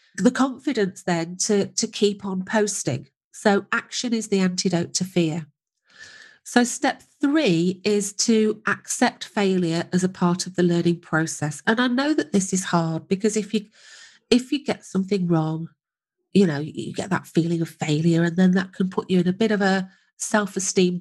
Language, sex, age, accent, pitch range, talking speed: English, female, 40-59, British, 170-215 Hz, 185 wpm